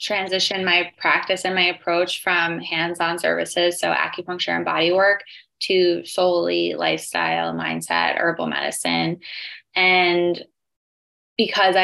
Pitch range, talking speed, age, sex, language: 170-195 Hz, 110 wpm, 10-29, female, English